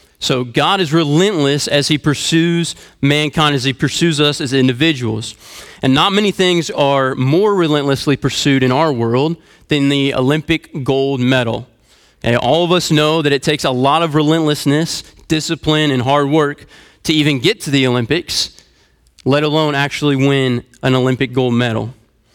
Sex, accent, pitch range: male, American, 130-160 Hz